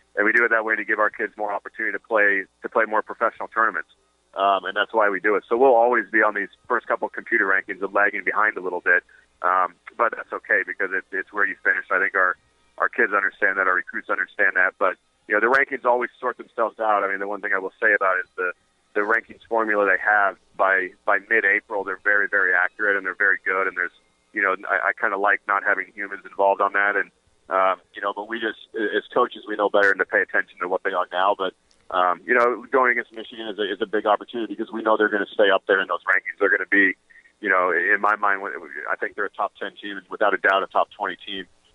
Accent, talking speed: American, 260 wpm